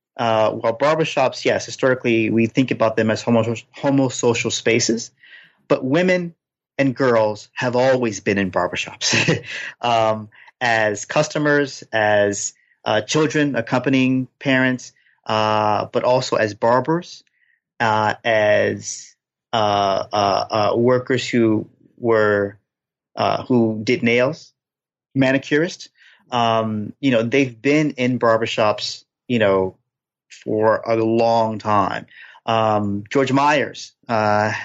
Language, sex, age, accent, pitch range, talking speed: English, male, 30-49, American, 110-125 Hz, 115 wpm